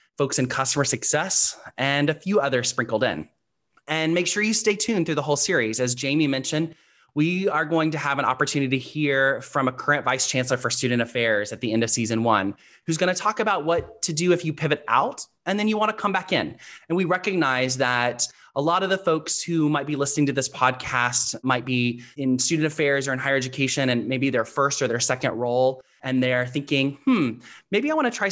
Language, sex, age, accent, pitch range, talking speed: English, male, 20-39, American, 125-165 Hz, 230 wpm